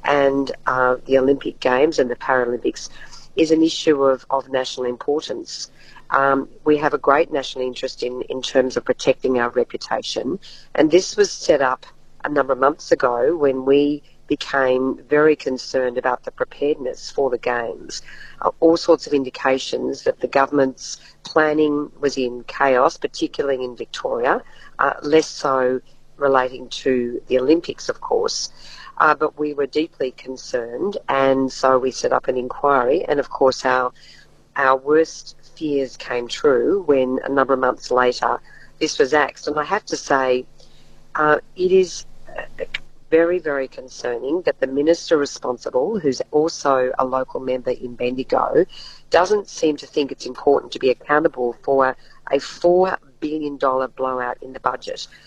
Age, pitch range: 40-59, 130-160 Hz